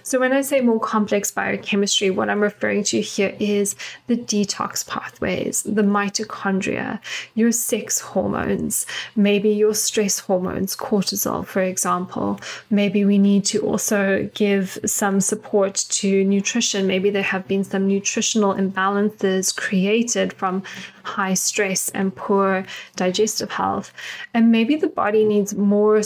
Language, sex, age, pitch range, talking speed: English, female, 10-29, 195-215 Hz, 135 wpm